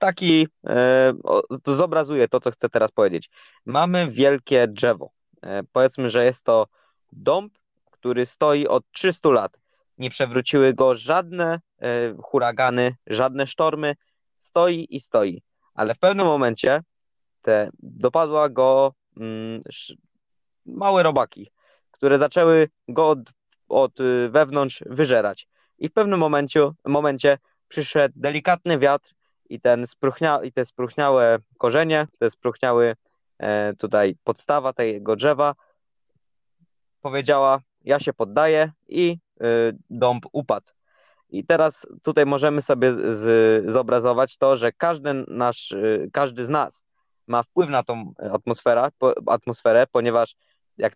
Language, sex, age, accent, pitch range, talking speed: Polish, male, 20-39, native, 120-150 Hz, 120 wpm